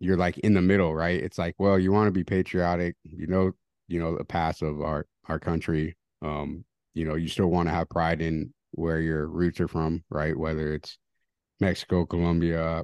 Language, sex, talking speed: English, male, 205 wpm